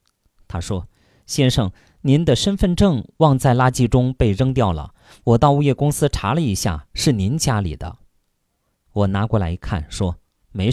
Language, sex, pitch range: Chinese, male, 90-130 Hz